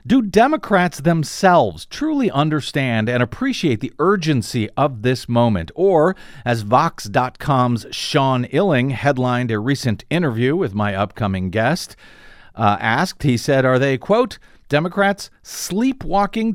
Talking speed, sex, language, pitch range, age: 125 wpm, male, English, 115-165 Hz, 50-69